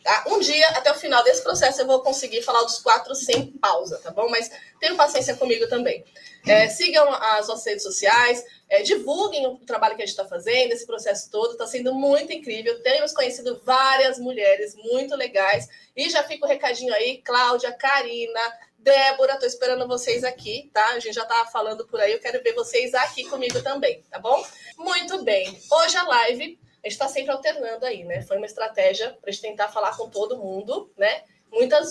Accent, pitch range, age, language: Brazilian, 235-330 Hz, 20-39, Portuguese